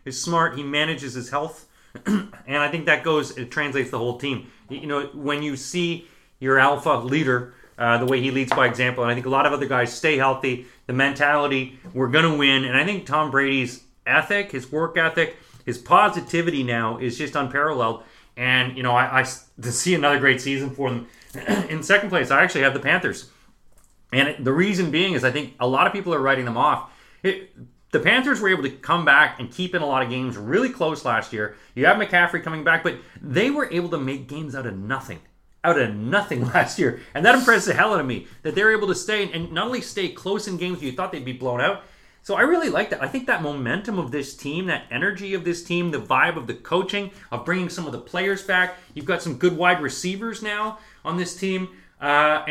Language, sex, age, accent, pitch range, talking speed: English, male, 30-49, American, 130-180 Hz, 235 wpm